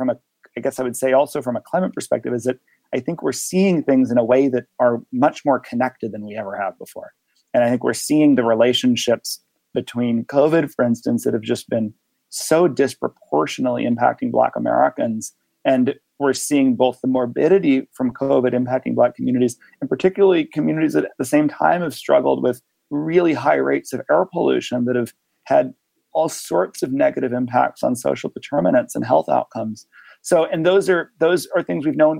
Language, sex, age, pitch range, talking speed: English, male, 30-49, 125-155 Hz, 190 wpm